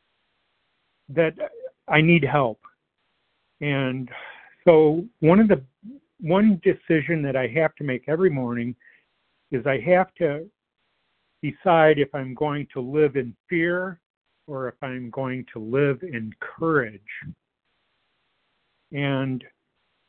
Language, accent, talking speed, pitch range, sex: English, American, 115 wpm, 125-155 Hz, male